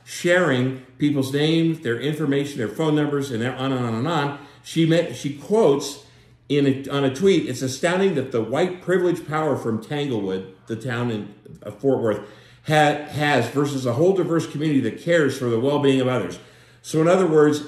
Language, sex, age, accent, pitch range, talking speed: English, male, 50-69, American, 125-155 Hz, 190 wpm